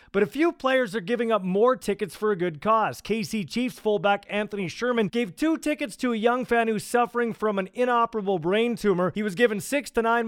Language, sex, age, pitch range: English, male, 30-49, 195-240 Hz